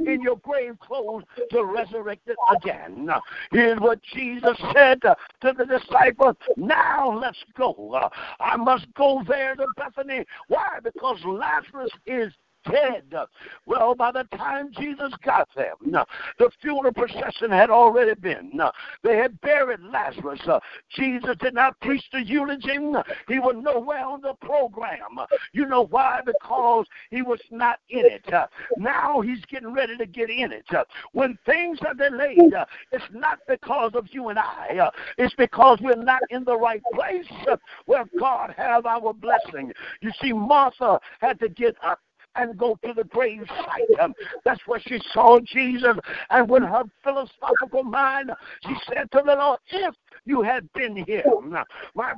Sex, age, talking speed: male, 60-79, 155 wpm